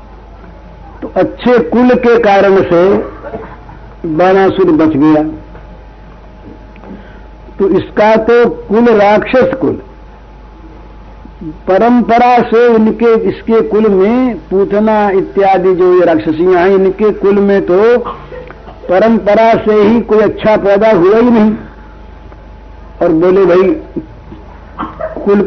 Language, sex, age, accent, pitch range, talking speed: Hindi, male, 60-79, native, 155-225 Hz, 100 wpm